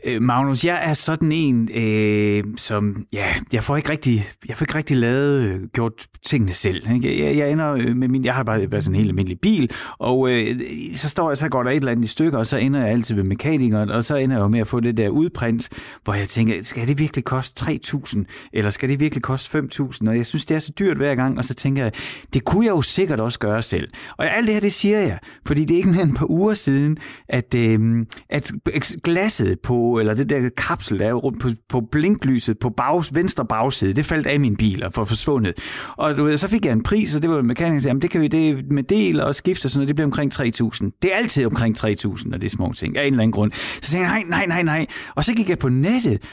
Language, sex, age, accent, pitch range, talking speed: Danish, male, 30-49, native, 115-155 Hz, 255 wpm